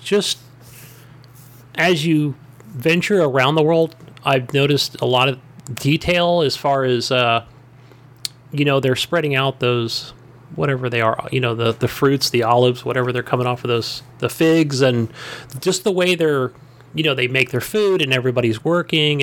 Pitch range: 125-150 Hz